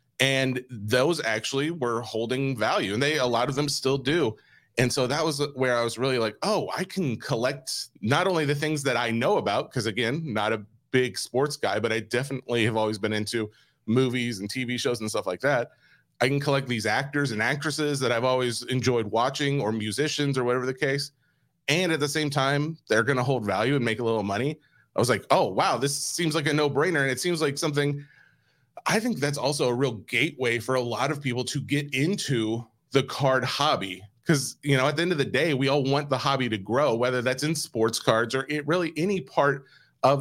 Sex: male